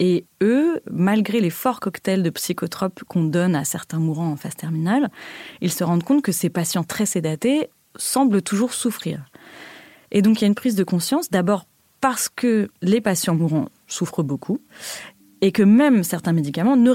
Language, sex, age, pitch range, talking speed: French, female, 30-49, 155-215 Hz, 180 wpm